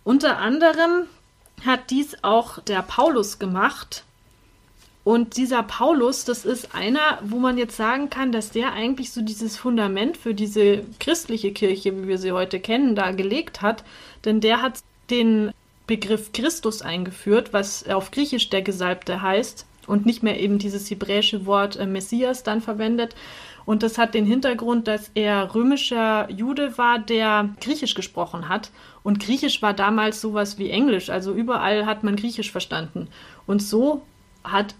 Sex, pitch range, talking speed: female, 200-235 Hz, 155 wpm